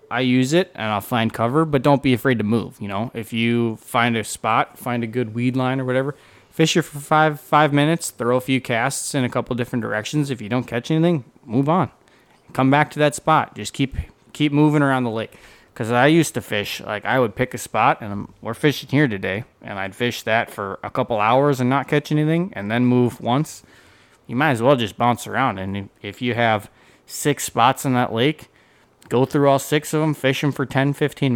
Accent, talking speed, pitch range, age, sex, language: American, 230 wpm, 110-135 Hz, 20-39, male, English